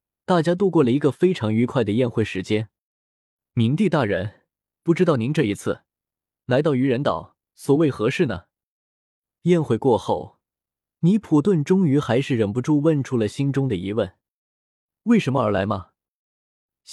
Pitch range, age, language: 110-160 Hz, 20-39, Chinese